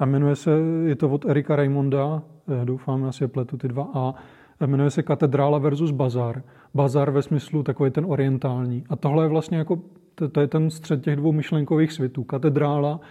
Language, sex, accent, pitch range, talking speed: Czech, male, native, 140-155 Hz, 185 wpm